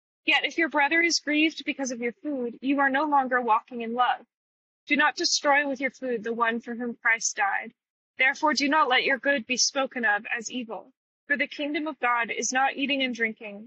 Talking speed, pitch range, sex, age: 220 wpm, 235-280 Hz, female, 20-39